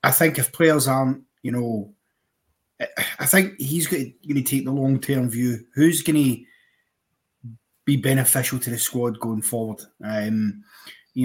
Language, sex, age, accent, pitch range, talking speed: English, male, 30-49, British, 115-130 Hz, 150 wpm